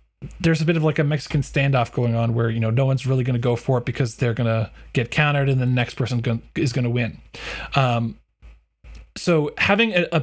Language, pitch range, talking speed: English, 120-165 Hz, 225 wpm